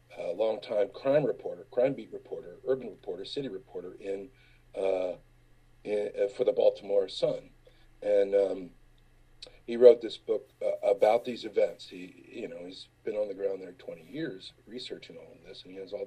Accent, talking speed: American, 175 wpm